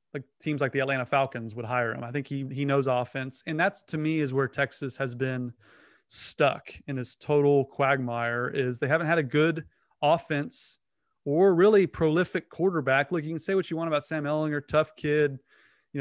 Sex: male